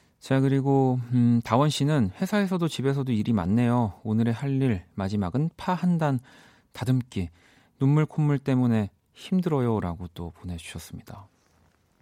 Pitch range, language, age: 95-130 Hz, Korean, 40-59